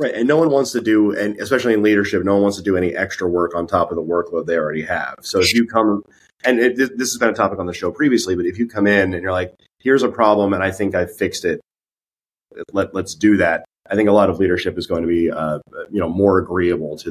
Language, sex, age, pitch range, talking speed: English, male, 30-49, 90-115 Hz, 275 wpm